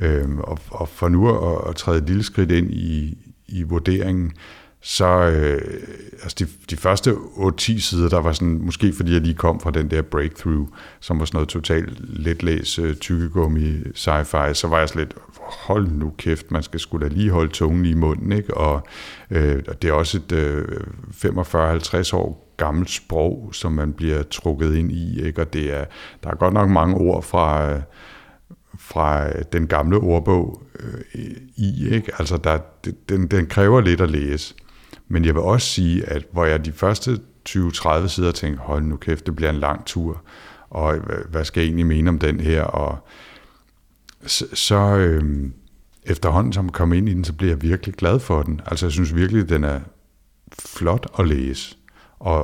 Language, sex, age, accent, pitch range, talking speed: Danish, male, 60-79, native, 80-95 Hz, 185 wpm